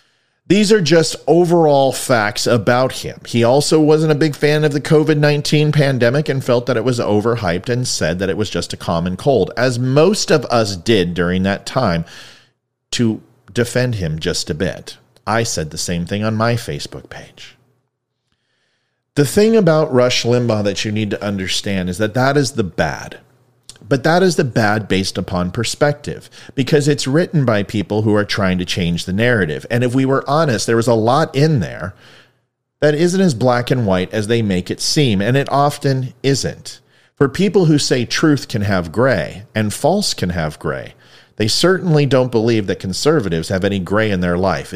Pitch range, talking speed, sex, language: 100-150 Hz, 190 wpm, male, English